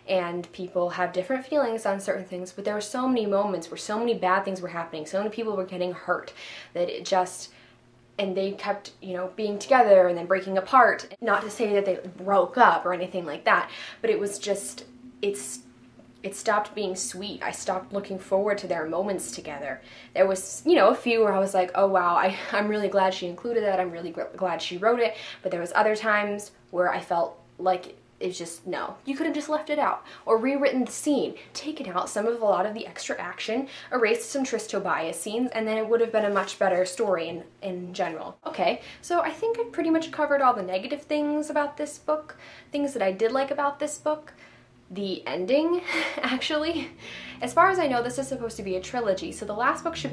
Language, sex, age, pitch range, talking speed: English, female, 10-29, 185-245 Hz, 225 wpm